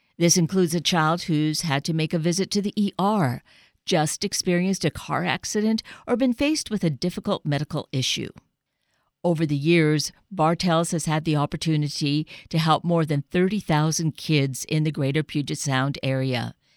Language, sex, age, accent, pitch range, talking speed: English, female, 50-69, American, 145-210 Hz, 165 wpm